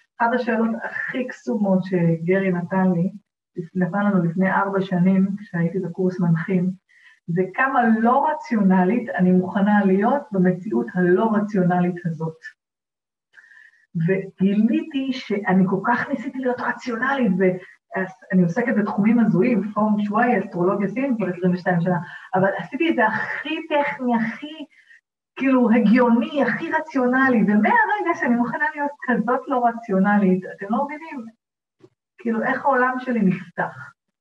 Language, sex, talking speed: Hebrew, female, 120 wpm